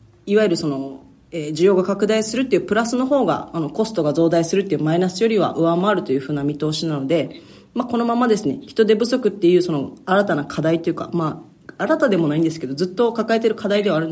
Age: 40-59